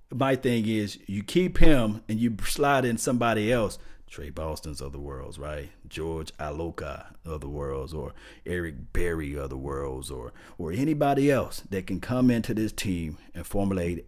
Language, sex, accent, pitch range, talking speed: English, male, American, 85-120 Hz, 175 wpm